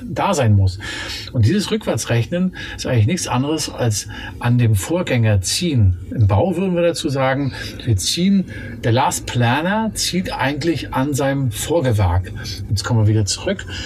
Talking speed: 155 wpm